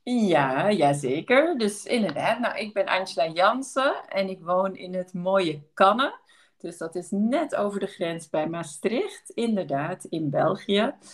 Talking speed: 155 wpm